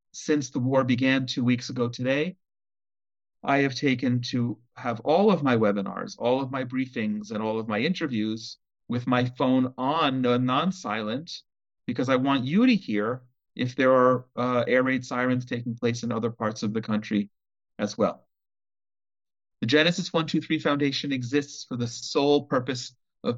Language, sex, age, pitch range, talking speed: English, male, 40-59, 120-140 Hz, 165 wpm